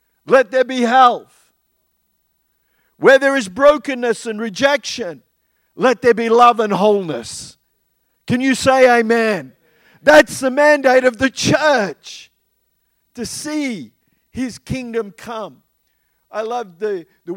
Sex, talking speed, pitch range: male, 120 wpm, 220-270 Hz